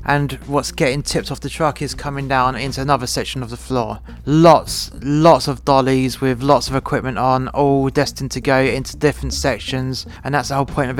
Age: 20-39